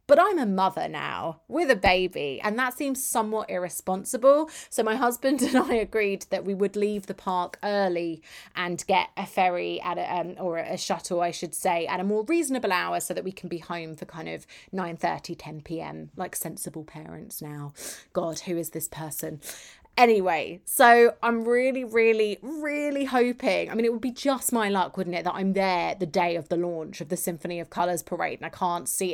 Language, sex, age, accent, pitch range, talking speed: English, female, 20-39, British, 175-220 Hz, 205 wpm